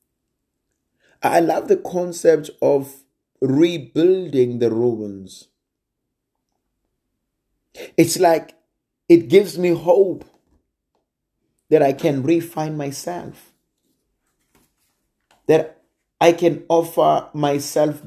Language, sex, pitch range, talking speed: English, male, 120-150 Hz, 80 wpm